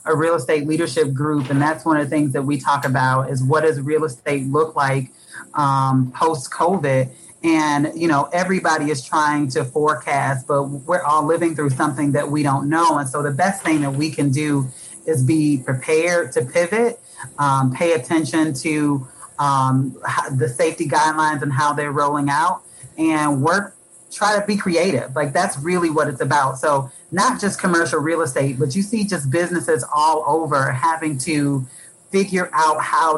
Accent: American